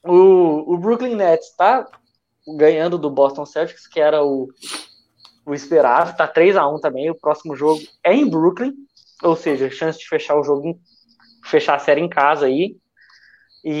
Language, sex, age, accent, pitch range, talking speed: Portuguese, male, 20-39, Brazilian, 145-180 Hz, 160 wpm